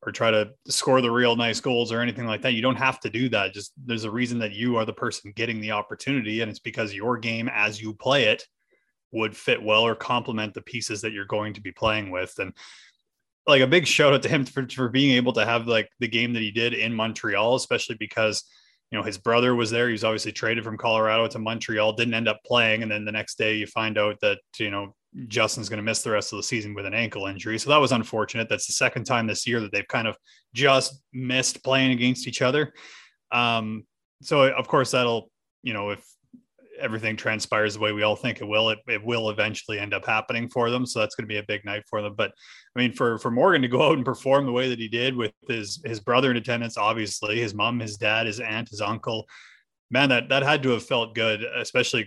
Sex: male